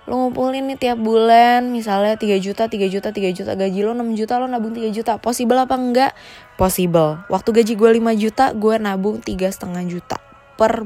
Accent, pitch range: native, 185-235 Hz